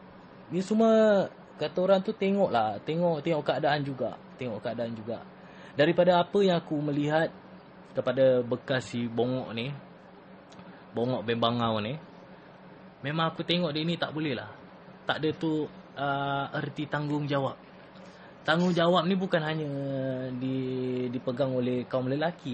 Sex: male